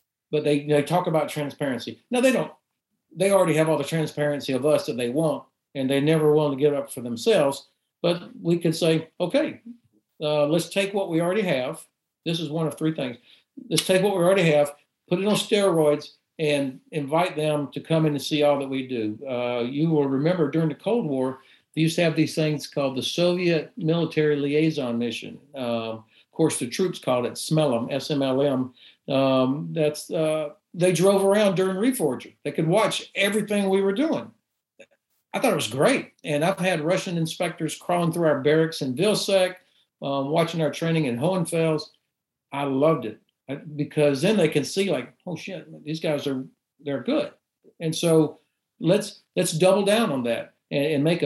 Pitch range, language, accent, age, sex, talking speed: 140-175 Hz, English, American, 60-79, male, 190 wpm